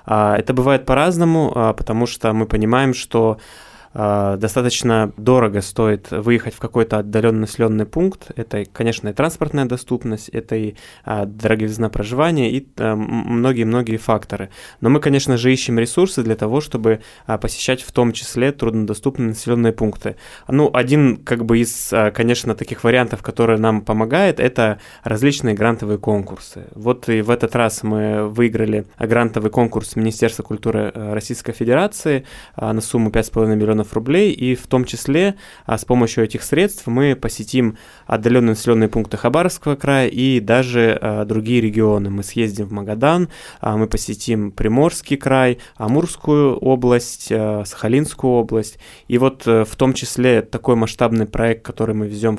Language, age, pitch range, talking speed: Russian, 20-39, 110-130 Hz, 135 wpm